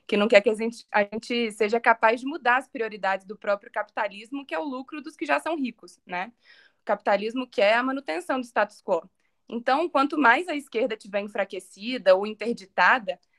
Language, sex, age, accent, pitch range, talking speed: Portuguese, female, 20-39, Brazilian, 215-280 Hz, 200 wpm